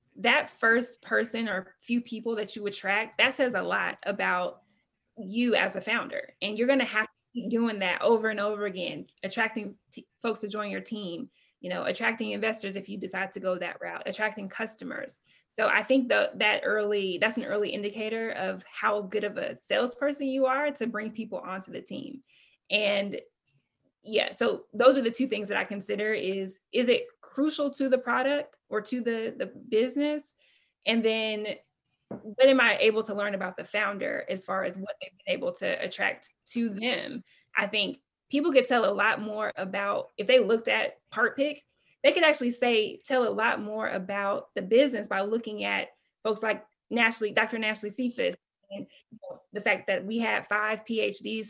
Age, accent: 20-39, American